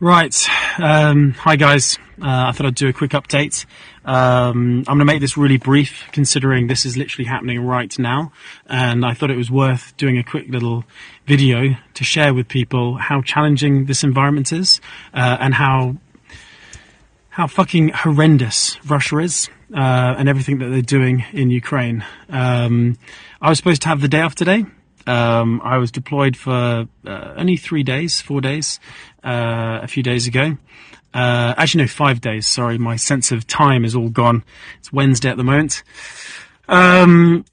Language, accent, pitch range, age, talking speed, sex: Russian, British, 125-150 Hz, 30-49, 170 wpm, male